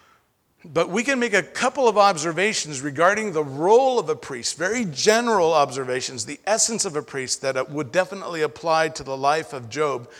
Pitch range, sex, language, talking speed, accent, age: 135-195 Hz, male, English, 180 wpm, American, 50-69